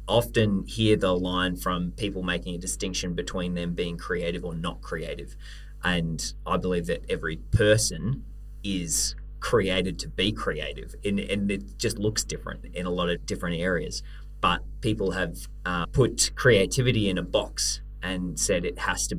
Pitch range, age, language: 85-100 Hz, 20-39, English